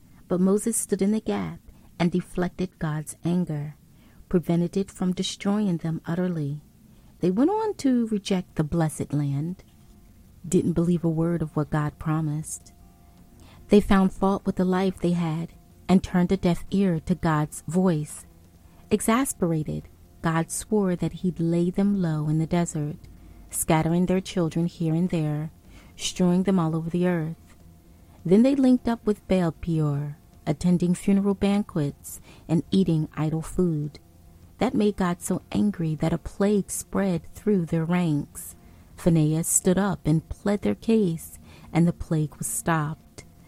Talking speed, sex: 150 wpm, female